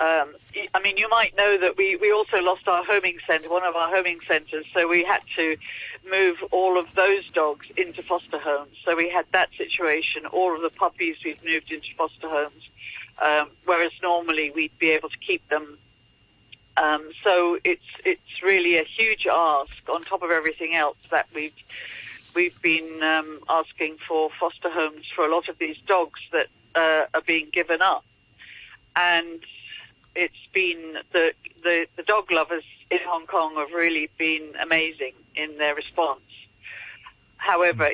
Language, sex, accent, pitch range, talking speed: English, female, British, 155-185 Hz, 170 wpm